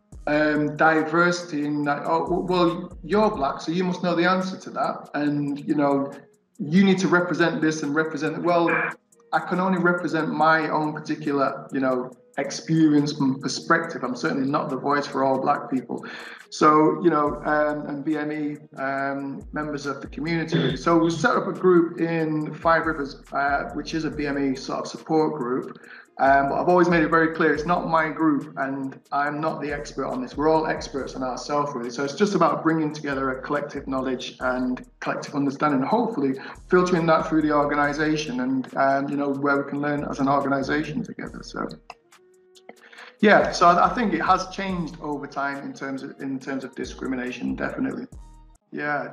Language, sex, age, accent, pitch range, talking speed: English, male, 20-39, British, 140-175 Hz, 185 wpm